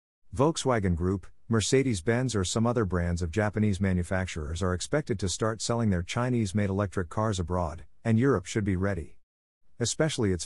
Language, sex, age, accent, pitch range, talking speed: English, male, 50-69, American, 90-115 Hz, 155 wpm